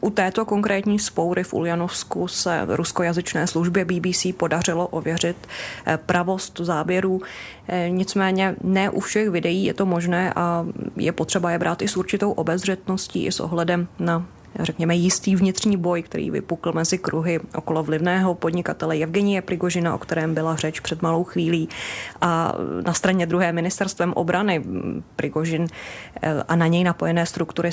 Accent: native